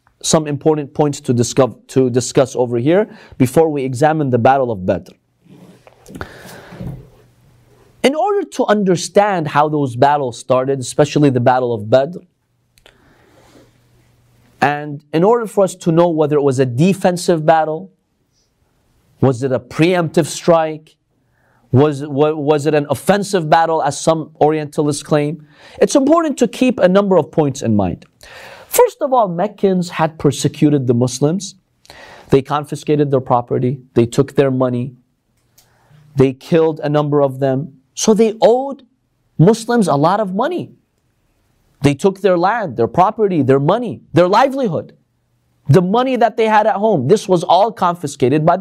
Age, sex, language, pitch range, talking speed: 30-49, male, English, 130-190 Hz, 145 wpm